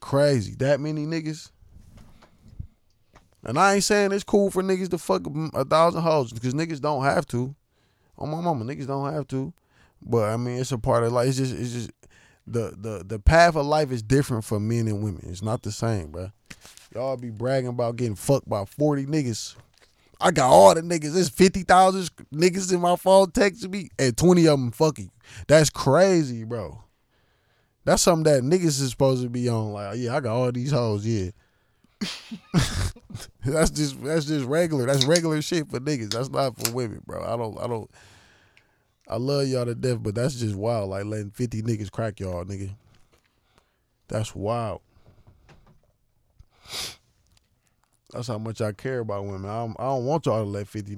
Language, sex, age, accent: English, male, 20-39, American